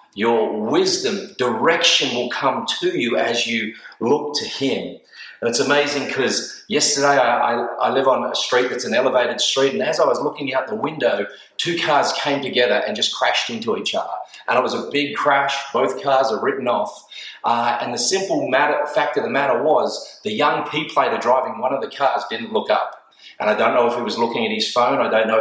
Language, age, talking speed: English, 30-49, 215 wpm